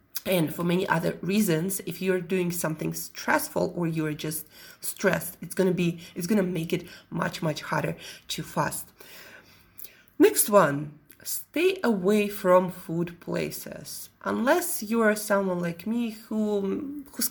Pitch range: 170-220 Hz